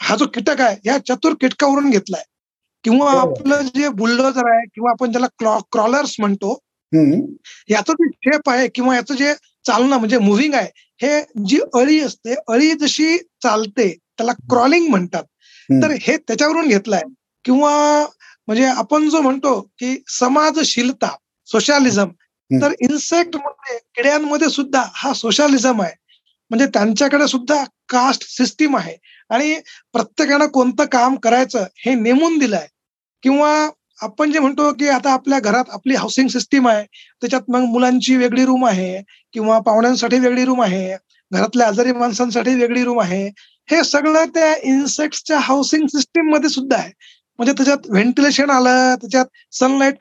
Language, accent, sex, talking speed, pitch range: Marathi, native, male, 140 wpm, 235-295 Hz